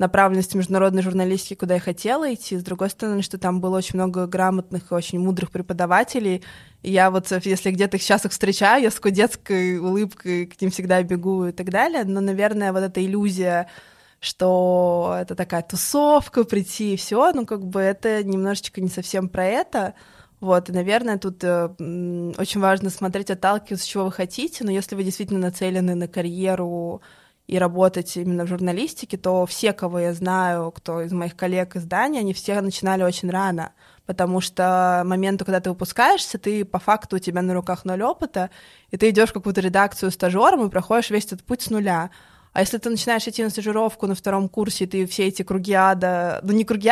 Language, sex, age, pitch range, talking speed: Russian, female, 20-39, 180-210 Hz, 190 wpm